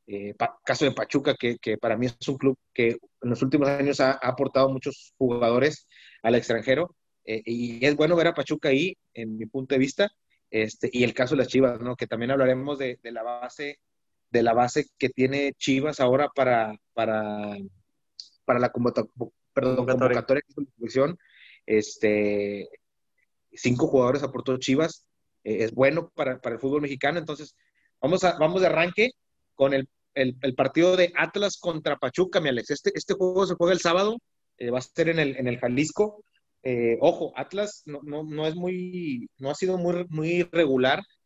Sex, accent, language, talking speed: male, Mexican, Spanish, 185 wpm